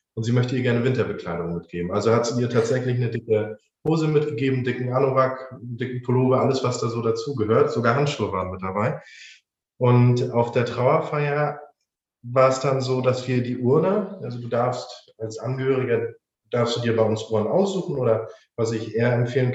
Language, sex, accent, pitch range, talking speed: German, male, German, 115-135 Hz, 185 wpm